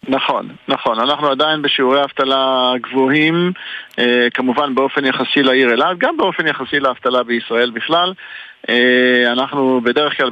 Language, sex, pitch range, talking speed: Hebrew, male, 125-155 Hz, 120 wpm